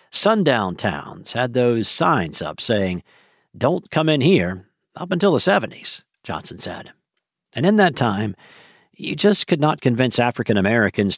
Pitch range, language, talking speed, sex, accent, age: 110-160 Hz, English, 145 wpm, male, American, 50-69